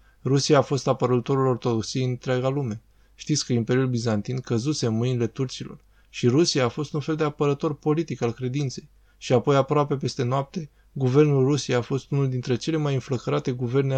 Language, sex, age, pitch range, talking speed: Romanian, male, 20-39, 115-135 Hz, 180 wpm